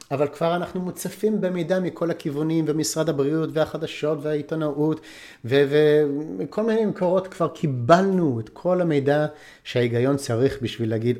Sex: male